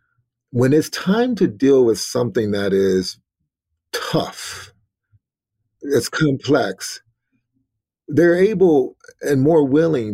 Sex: male